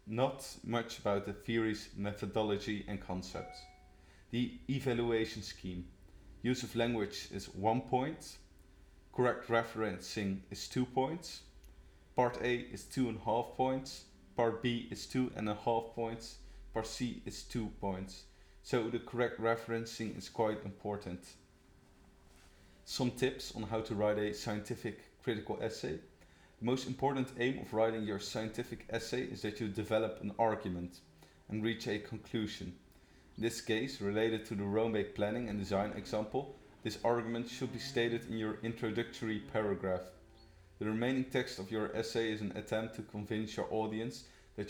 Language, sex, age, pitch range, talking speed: English, male, 30-49, 100-115 Hz, 150 wpm